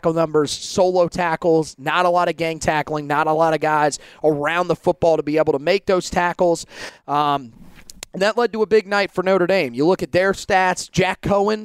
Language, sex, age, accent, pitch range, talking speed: English, male, 30-49, American, 155-195 Hz, 210 wpm